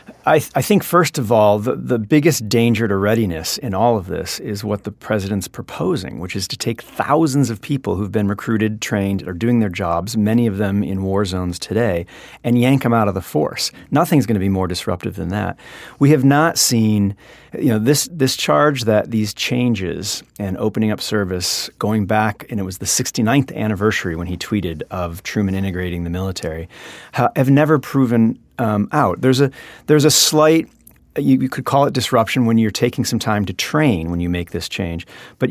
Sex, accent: male, American